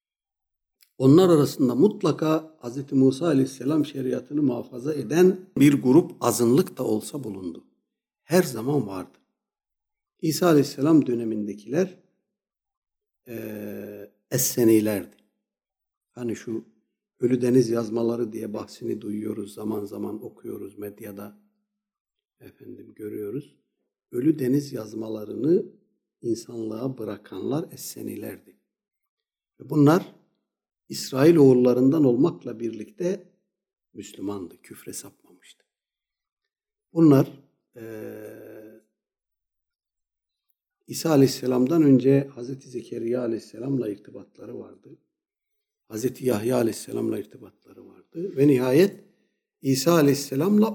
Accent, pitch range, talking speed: native, 115-180 Hz, 80 wpm